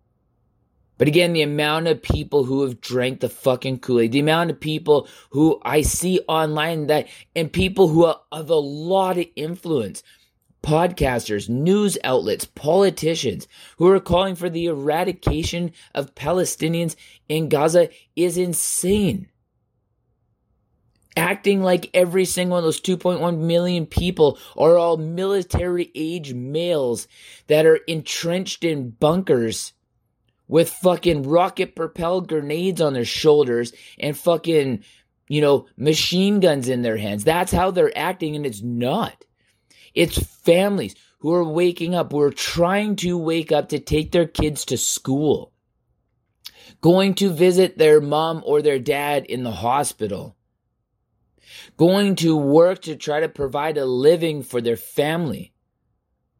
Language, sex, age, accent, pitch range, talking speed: English, male, 20-39, American, 145-175 Hz, 135 wpm